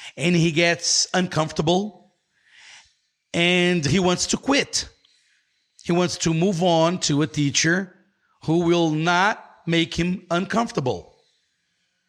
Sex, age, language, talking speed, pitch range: male, 50-69, Portuguese, 115 wpm, 150-195 Hz